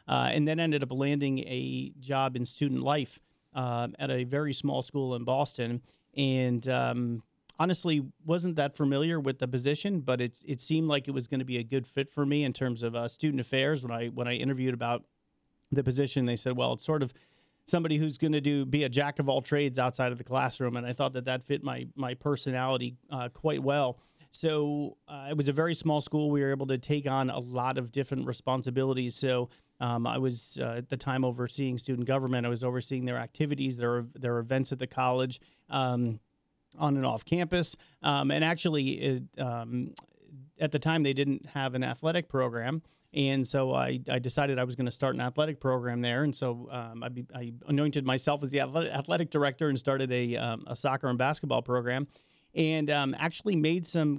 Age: 40-59